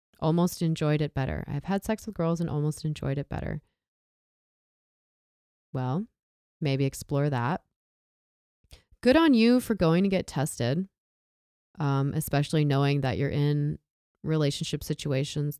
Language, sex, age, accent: English, female, 20-39, American